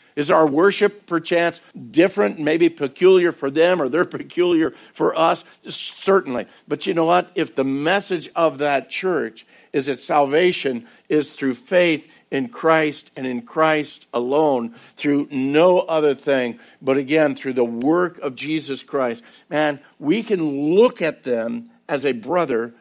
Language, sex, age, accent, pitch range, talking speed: English, male, 60-79, American, 130-160 Hz, 155 wpm